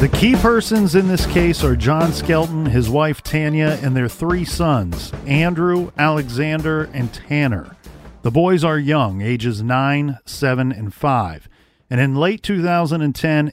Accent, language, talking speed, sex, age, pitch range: American, English, 145 wpm, male, 40-59, 125-165 Hz